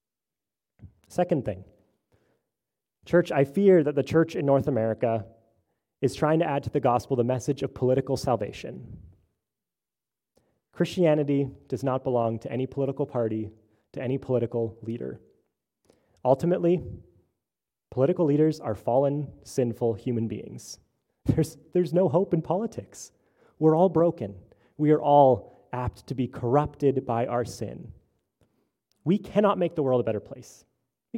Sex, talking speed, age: male, 135 wpm, 30-49